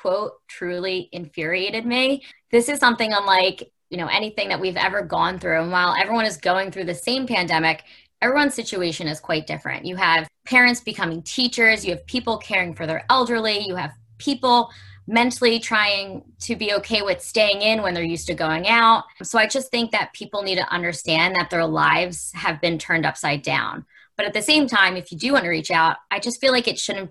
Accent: American